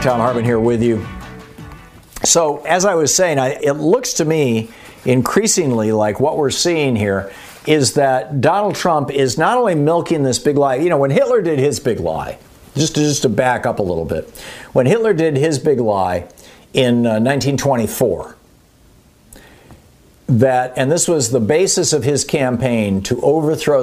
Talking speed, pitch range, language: 170 wpm, 105-135 Hz, English